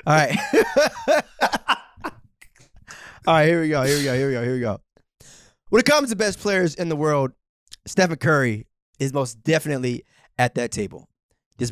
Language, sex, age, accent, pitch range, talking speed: English, male, 20-39, American, 120-165 Hz, 175 wpm